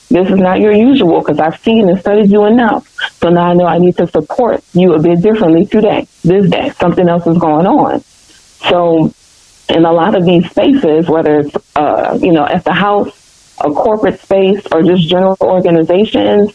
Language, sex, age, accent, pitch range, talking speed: English, female, 30-49, American, 165-195 Hz, 195 wpm